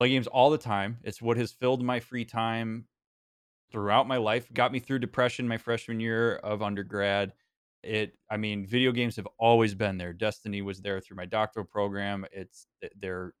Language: English